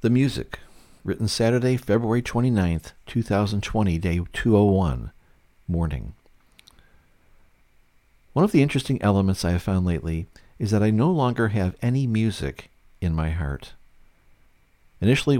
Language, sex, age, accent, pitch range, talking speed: English, male, 50-69, American, 85-115 Hz, 120 wpm